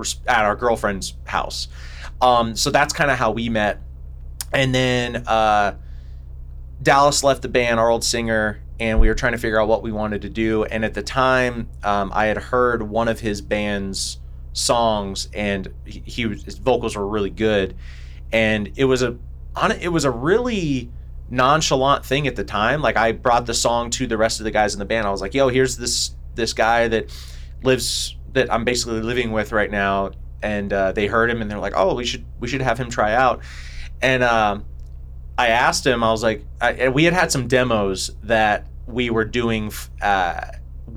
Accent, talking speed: American, 200 wpm